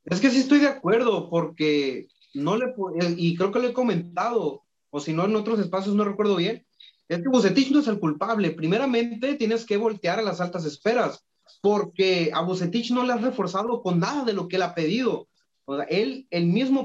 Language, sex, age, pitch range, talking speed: Spanish, male, 30-49, 160-225 Hz, 210 wpm